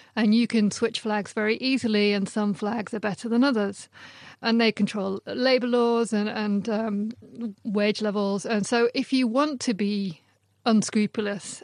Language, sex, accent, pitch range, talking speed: English, female, British, 205-230 Hz, 165 wpm